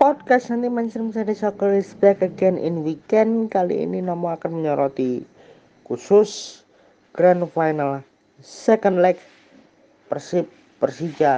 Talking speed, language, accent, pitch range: 110 wpm, Indonesian, native, 125-165 Hz